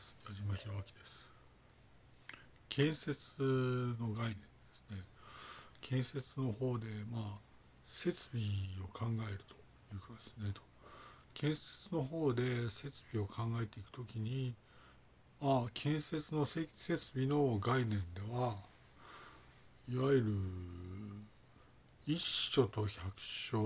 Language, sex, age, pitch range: Japanese, male, 60-79, 100-125 Hz